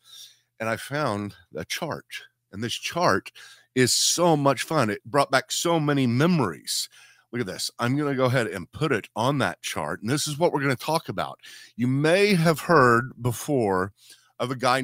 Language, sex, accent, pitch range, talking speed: English, male, American, 110-150 Hz, 200 wpm